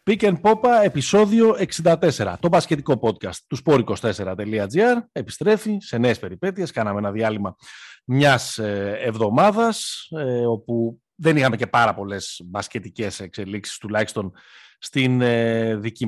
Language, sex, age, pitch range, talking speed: Greek, male, 30-49, 100-135 Hz, 110 wpm